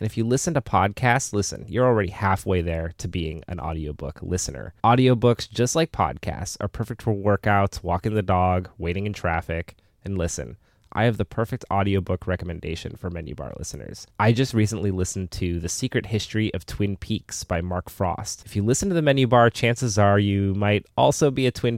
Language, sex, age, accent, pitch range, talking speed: English, male, 20-39, American, 90-115 Hz, 195 wpm